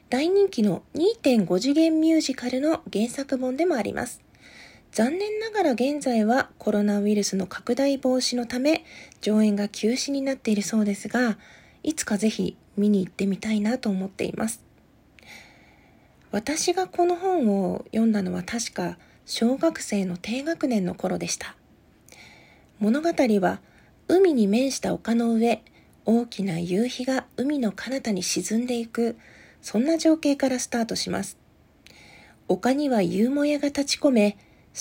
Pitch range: 210-280 Hz